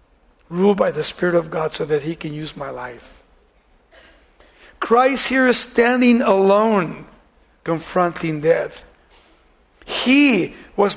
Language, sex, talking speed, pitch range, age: English, male, 120 wpm, 170-240 Hz, 60-79